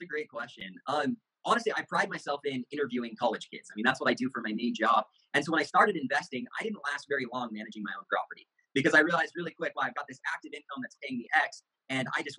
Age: 30-49